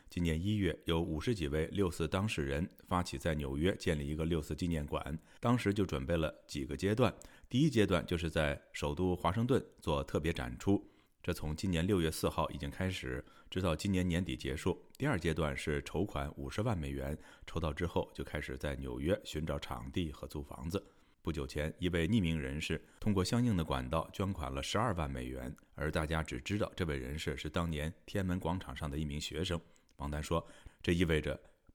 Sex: male